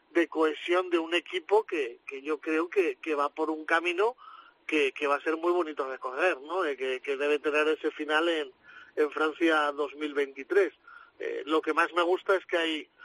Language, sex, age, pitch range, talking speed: Spanish, male, 40-59, 150-200 Hz, 200 wpm